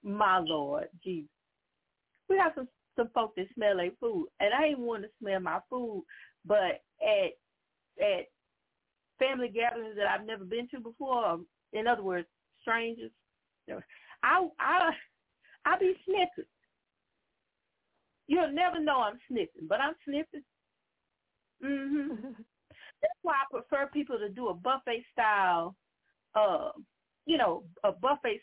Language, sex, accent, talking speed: English, female, American, 135 wpm